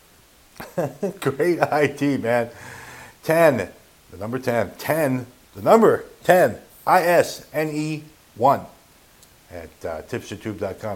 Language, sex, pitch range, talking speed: English, male, 105-150 Hz, 90 wpm